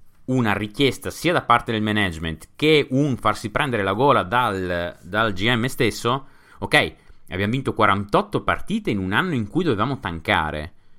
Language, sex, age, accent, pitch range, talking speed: Italian, male, 30-49, native, 80-115 Hz, 160 wpm